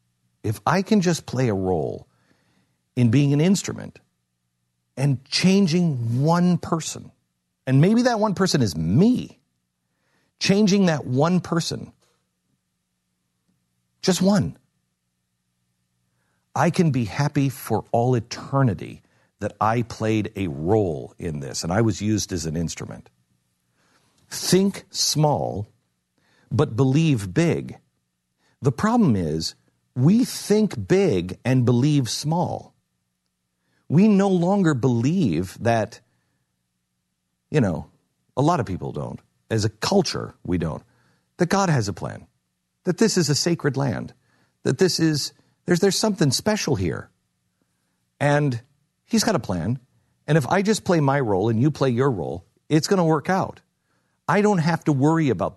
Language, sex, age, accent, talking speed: English, male, 50-69, American, 135 wpm